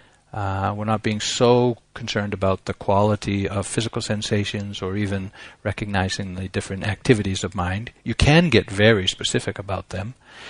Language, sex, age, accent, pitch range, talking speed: English, male, 60-79, American, 100-120 Hz, 155 wpm